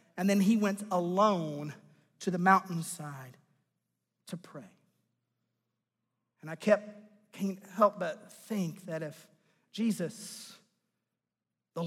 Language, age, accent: English, 40-59, American